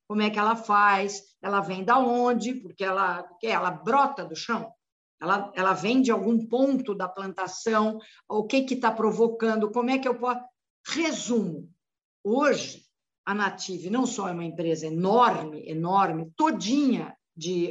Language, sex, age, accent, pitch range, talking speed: Portuguese, female, 50-69, Brazilian, 190-255 Hz, 165 wpm